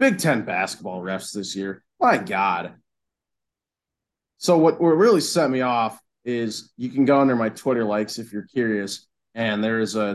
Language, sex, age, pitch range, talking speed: English, male, 20-39, 110-160 Hz, 175 wpm